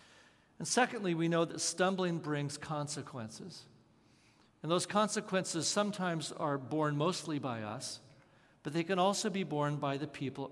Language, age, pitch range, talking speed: English, 50-69, 140-175 Hz, 150 wpm